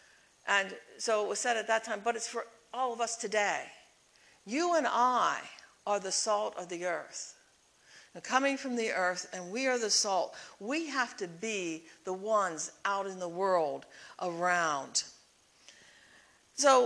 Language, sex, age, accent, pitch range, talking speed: English, female, 60-79, American, 185-240 Hz, 160 wpm